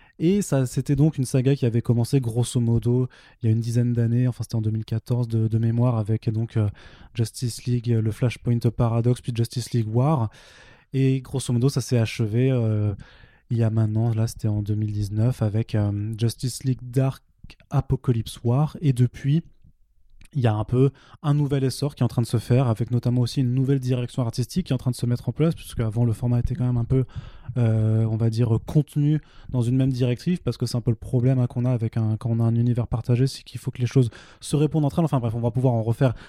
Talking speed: 240 wpm